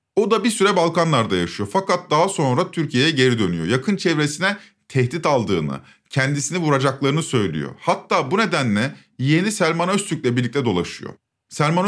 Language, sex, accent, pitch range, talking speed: Turkish, male, native, 135-185 Hz, 140 wpm